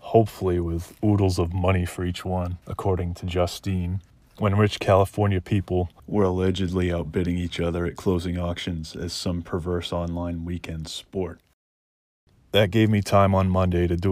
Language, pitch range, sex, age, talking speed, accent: English, 85-95 Hz, male, 30-49, 155 wpm, American